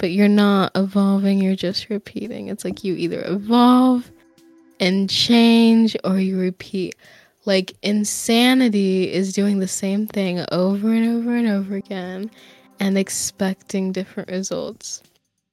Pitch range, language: 190-230 Hz, English